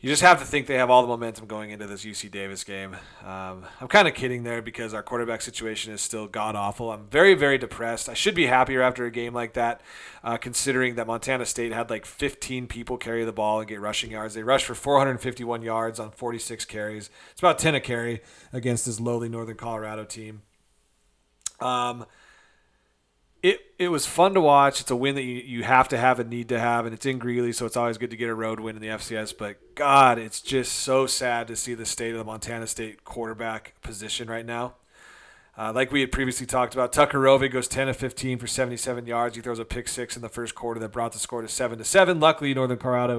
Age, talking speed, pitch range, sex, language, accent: 30-49, 235 wpm, 110-130 Hz, male, English, American